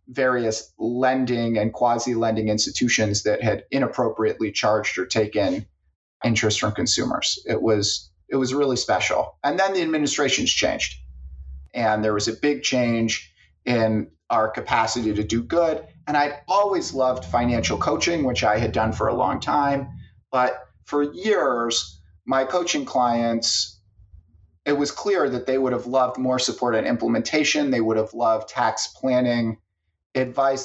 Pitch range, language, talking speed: 110-140 Hz, English, 150 wpm